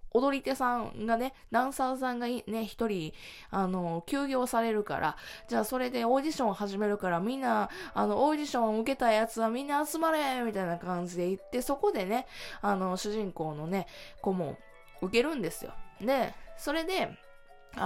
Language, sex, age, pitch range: Japanese, female, 20-39, 180-245 Hz